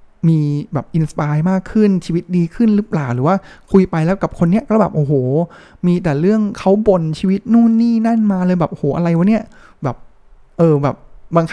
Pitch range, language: 145-195 Hz, Thai